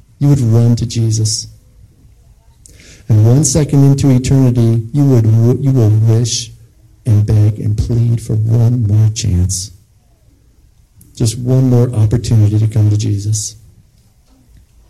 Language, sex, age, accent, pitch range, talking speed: English, male, 50-69, American, 105-120 Hz, 125 wpm